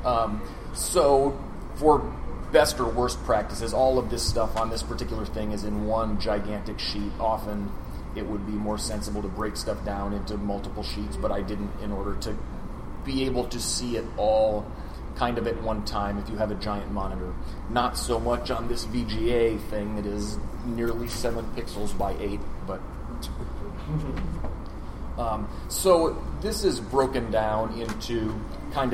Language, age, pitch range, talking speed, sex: English, 30-49, 105-120 Hz, 165 wpm, male